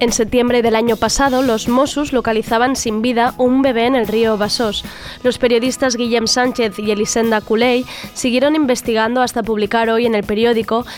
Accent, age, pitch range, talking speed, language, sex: Spanish, 20-39, 215-250 Hz, 170 wpm, Spanish, female